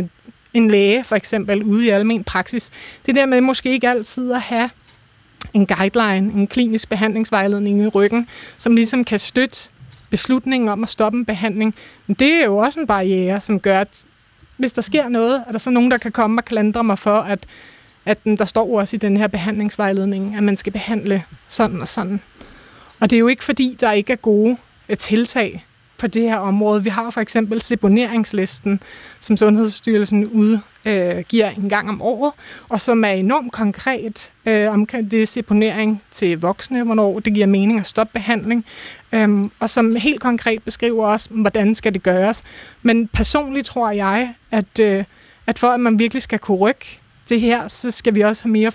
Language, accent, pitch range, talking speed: Danish, native, 205-235 Hz, 190 wpm